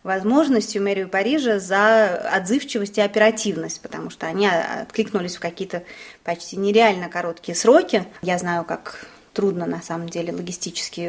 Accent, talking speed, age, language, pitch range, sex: native, 135 wpm, 20-39, Russian, 180-225 Hz, female